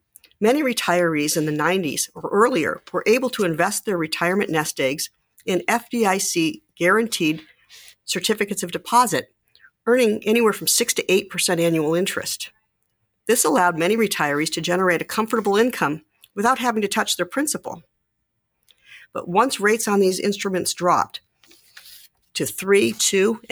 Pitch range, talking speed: 165-220 Hz, 135 wpm